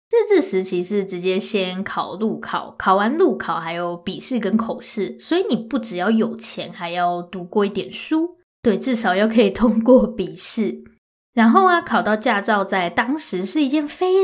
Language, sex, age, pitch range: Chinese, female, 20-39, 190-250 Hz